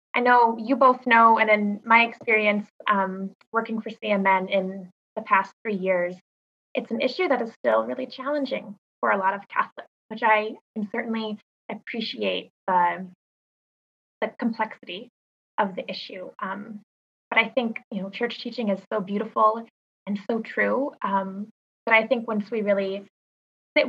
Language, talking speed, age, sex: English, 160 wpm, 20-39, female